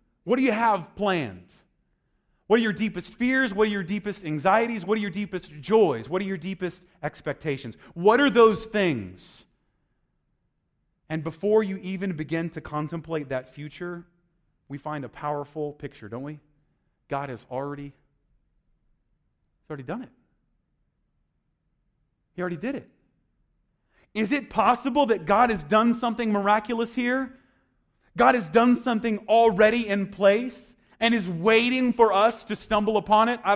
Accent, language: American, English